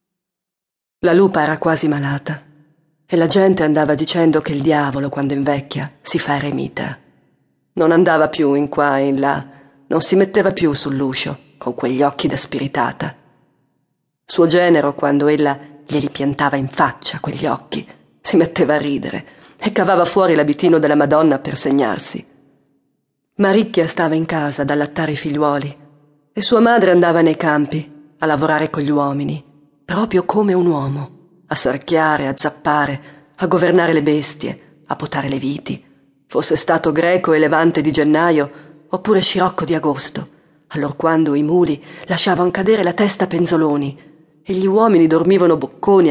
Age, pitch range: 40-59, 145-170 Hz